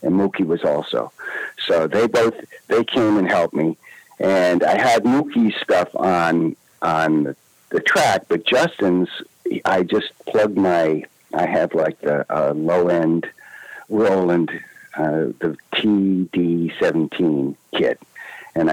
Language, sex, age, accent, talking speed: English, male, 60-79, American, 130 wpm